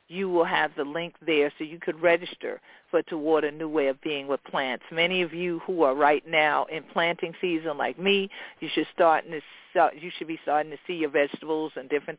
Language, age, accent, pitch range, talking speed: English, 50-69, American, 150-180 Hz, 225 wpm